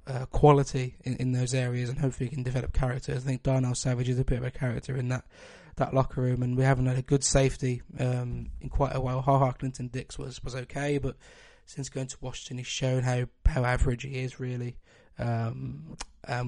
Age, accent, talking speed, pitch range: 20-39, British, 215 wpm, 125-135 Hz